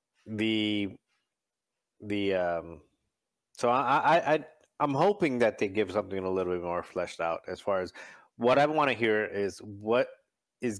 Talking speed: 165 wpm